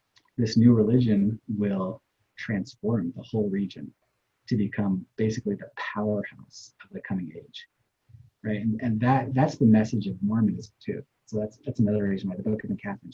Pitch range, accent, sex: 105-125 Hz, American, male